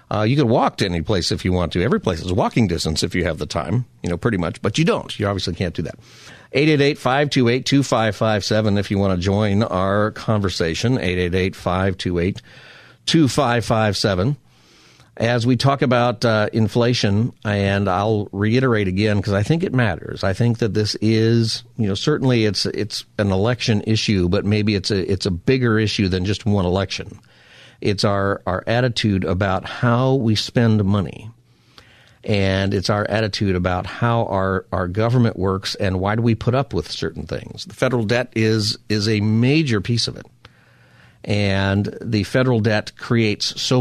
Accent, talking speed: American, 175 wpm